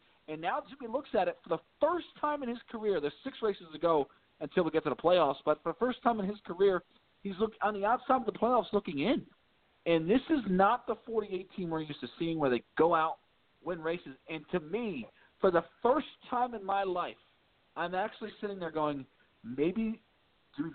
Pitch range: 155-210 Hz